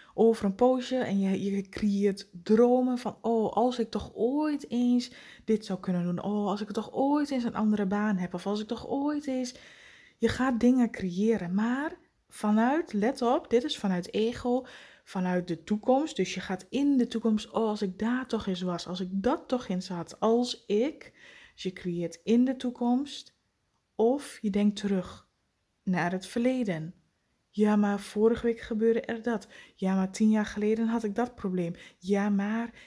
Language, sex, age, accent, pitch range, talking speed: Dutch, female, 20-39, Dutch, 200-245 Hz, 185 wpm